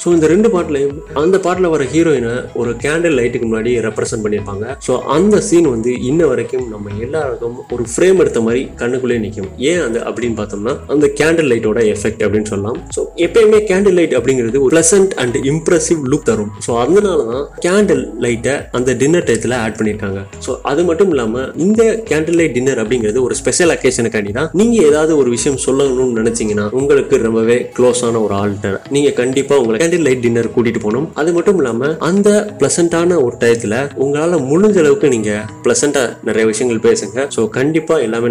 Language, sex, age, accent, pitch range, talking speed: Tamil, male, 30-49, native, 115-170 Hz, 125 wpm